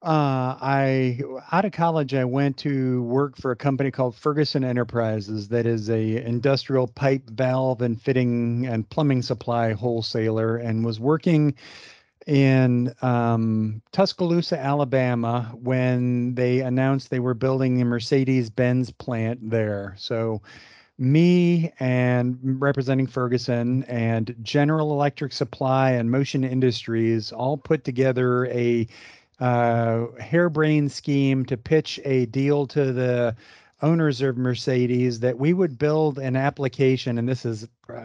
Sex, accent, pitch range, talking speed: male, American, 120-140 Hz, 130 wpm